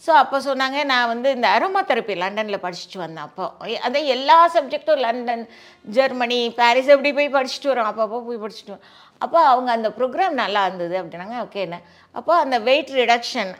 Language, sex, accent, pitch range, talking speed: Tamil, female, native, 215-285 Hz, 170 wpm